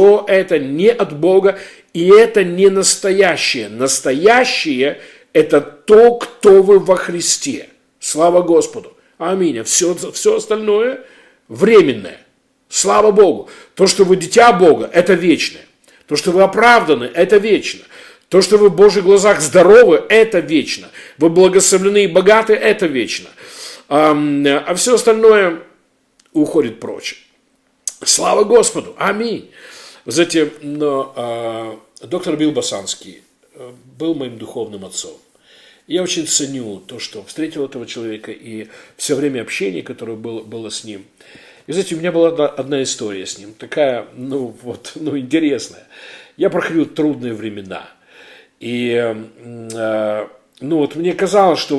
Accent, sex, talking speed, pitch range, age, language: native, male, 130 wpm, 135-205 Hz, 50-69, Russian